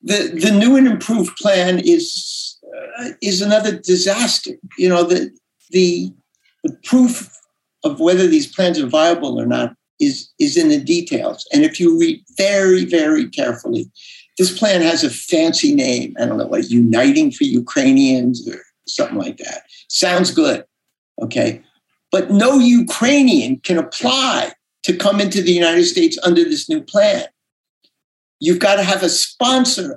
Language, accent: English, American